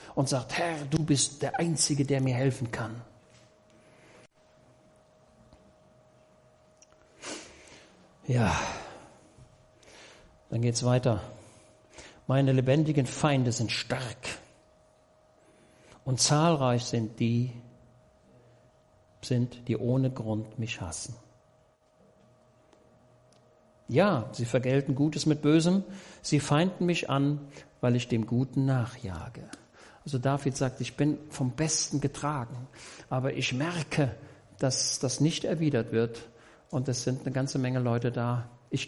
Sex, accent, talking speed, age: male, German, 110 wpm, 60-79